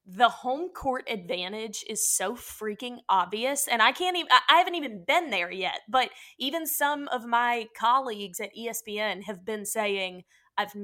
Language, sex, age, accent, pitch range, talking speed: English, female, 20-39, American, 205-265 Hz, 165 wpm